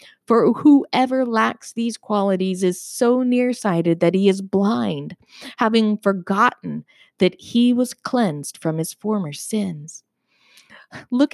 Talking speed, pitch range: 120 wpm, 195-265 Hz